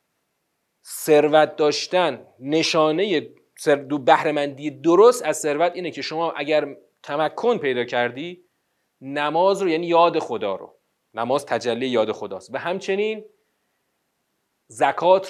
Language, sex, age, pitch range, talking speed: Persian, male, 40-59, 150-210 Hz, 105 wpm